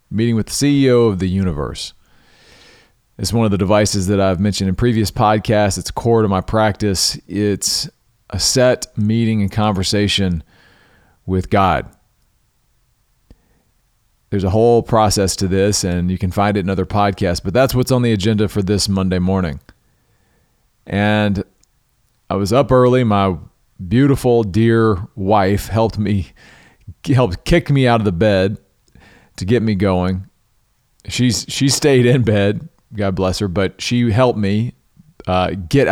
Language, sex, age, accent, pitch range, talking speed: English, male, 40-59, American, 95-120 Hz, 150 wpm